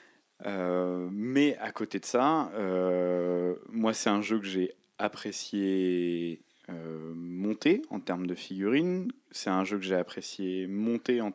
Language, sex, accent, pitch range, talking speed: French, male, French, 90-105 Hz, 150 wpm